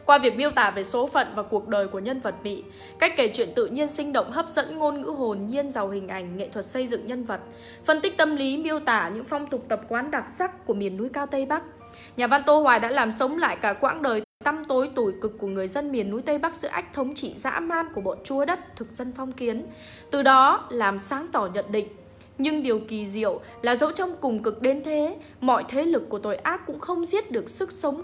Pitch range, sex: 220-305 Hz, female